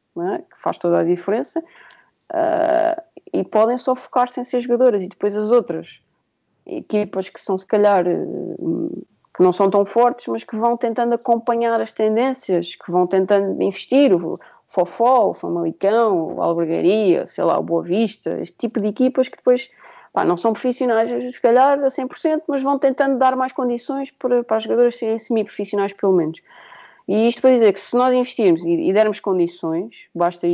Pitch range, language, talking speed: 185-255 Hz, Portuguese, 175 wpm